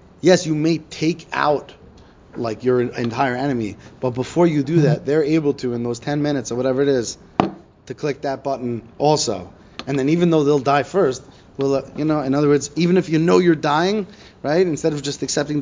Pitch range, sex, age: 115-145 Hz, male, 30-49